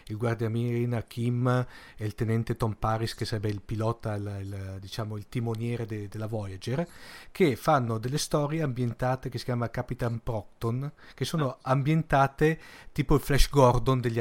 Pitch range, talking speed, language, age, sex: 115-140 Hz, 165 wpm, Italian, 40-59, male